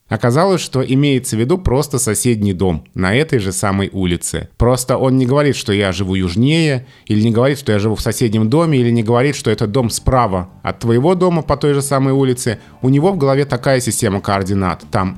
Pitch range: 105-140 Hz